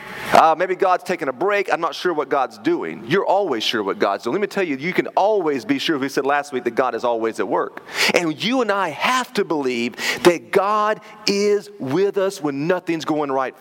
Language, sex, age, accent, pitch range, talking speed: English, male, 30-49, American, 190-245 Hz, 235 wpm